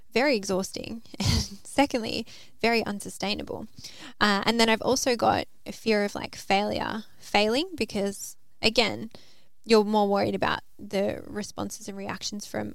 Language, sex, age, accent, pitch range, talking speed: English, female, 10-29, Australian, 200-240 Hz, 135 wpm